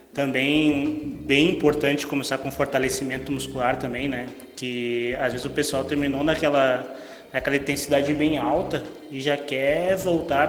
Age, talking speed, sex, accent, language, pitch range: 20-39, 135 wpm, male, Brazilian, Portuguese, 140-165 Hz